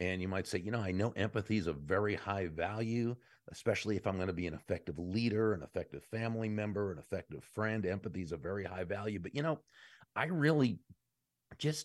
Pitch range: 85-110 Hz